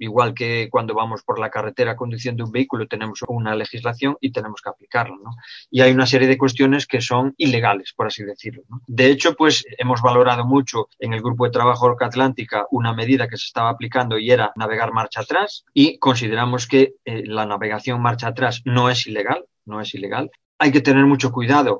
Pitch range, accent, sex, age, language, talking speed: 115-135 Hz, Spanish, male, 30-49, Spanish, 195 wpm